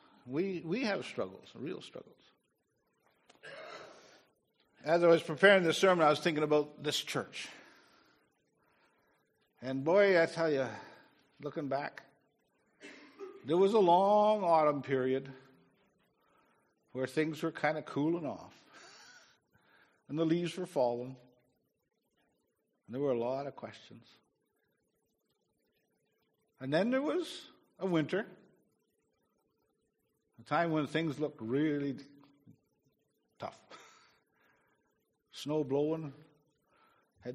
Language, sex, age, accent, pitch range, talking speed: English, male, 50-69, American, 140-190 Hz, 105 wpm